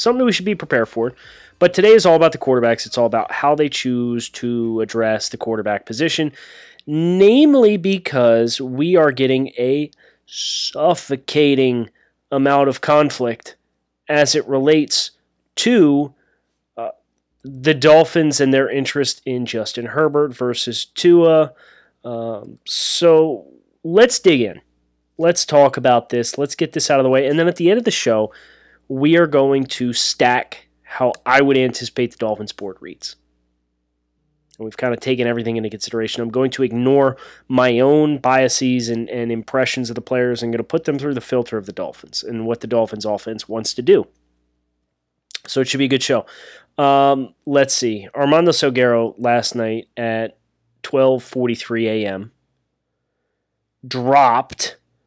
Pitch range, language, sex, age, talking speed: 115-145 Hz, English, male, 30-49, 155 wpm